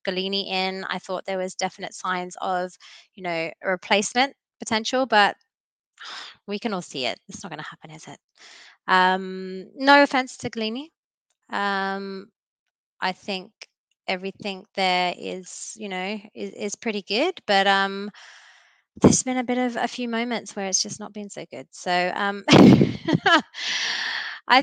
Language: English